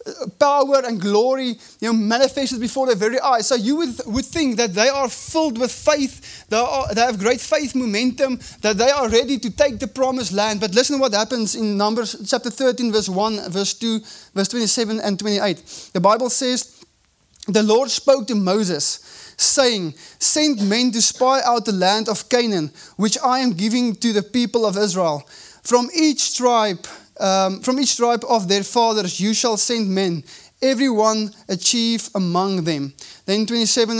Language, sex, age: English, male, 20-39